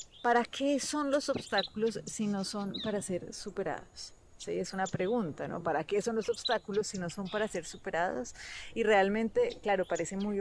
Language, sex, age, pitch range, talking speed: Spanish, female, 30-49, 195-230 Hz, 185 wpm